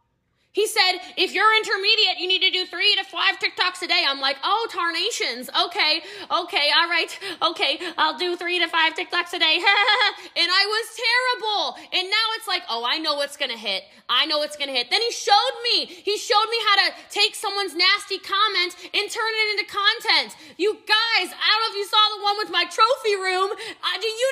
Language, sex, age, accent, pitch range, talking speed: English, female, 20-39, American, 310-415 Hz, 210 wpm